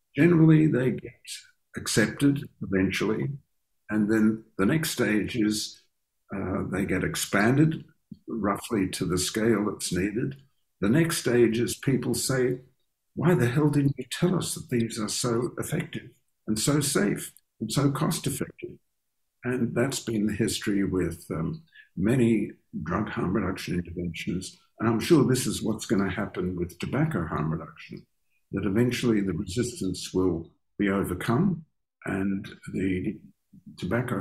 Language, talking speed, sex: English, 140 wpm, male